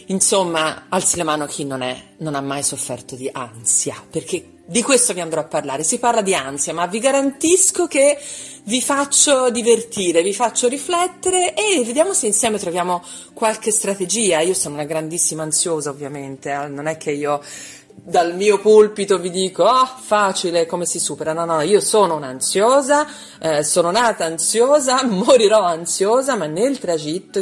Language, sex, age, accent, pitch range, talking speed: Italian, female, 40-59, native, 150-220 Hz, 165 wpm